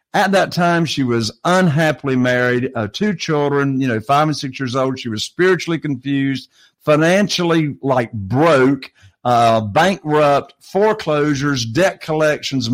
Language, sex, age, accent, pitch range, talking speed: English, male, 50-69, American, 125-160 Hz, 135 wpm